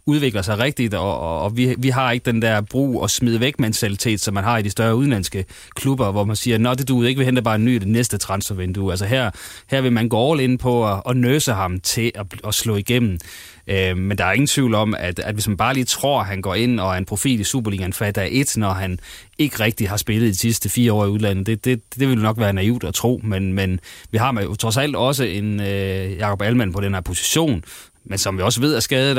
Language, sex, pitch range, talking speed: Danish, male, 100-125 Hz, 255 wpm